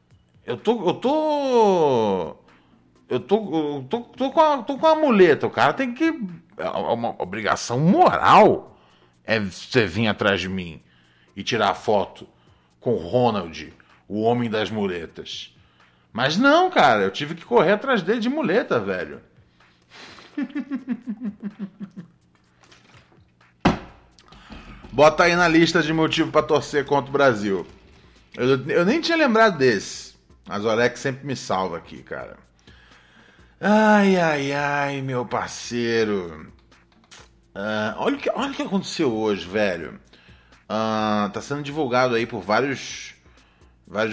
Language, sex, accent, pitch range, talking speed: Portuguese, male, Brazilian, 105-170 Hz, 130 wpm